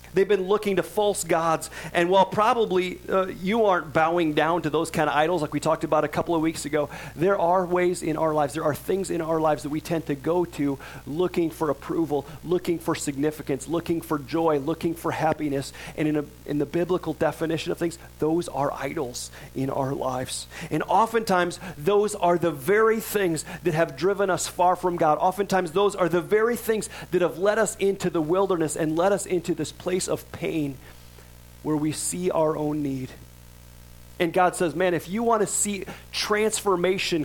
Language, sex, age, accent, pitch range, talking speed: English, male, 40-59, American, 155-195 Hz, 200 wpm